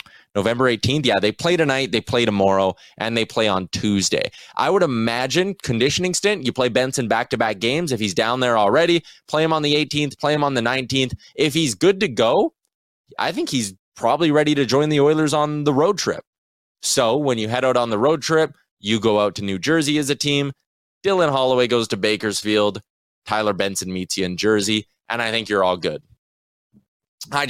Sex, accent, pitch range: male, American, 100-135 Hz